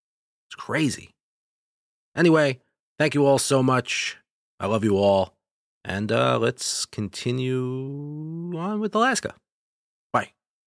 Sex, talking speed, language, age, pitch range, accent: male, 110 wpm, English, 30-49, 95-130 Hz, American